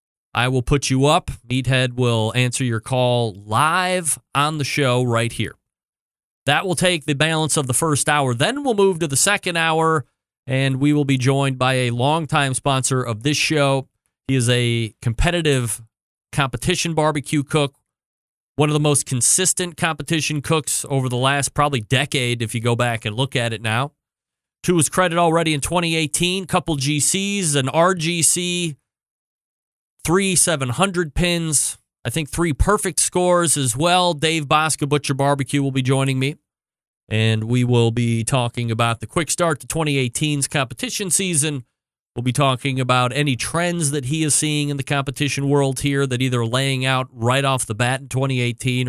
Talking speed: 170 wpm